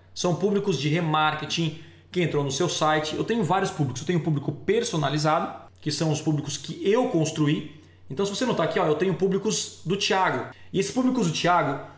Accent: Brazilian